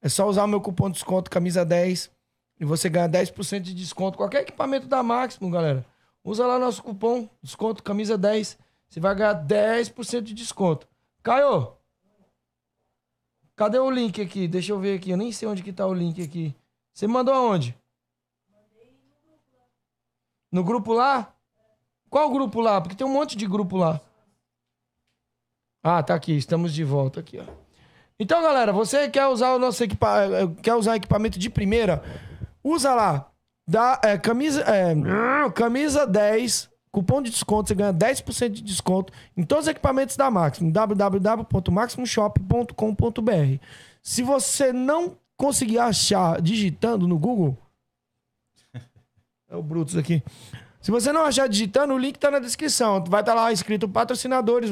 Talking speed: 155 wpm